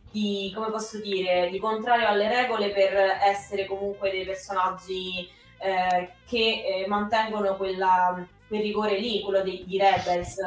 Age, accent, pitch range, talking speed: 20-39, native, 185-210 Hz, 145 wpm